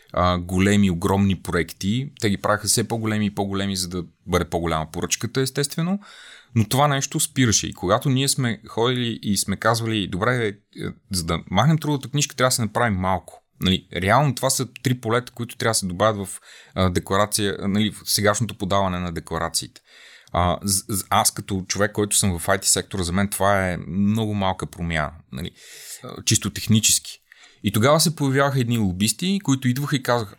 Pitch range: 95-125 Hz